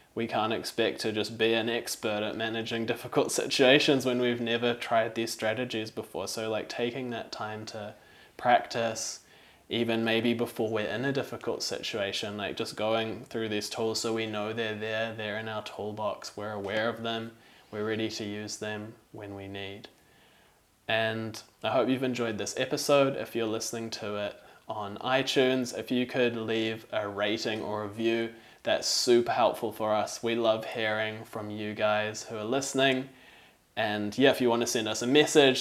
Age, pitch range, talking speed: 20-39, 110-120 Hz, 180 wpm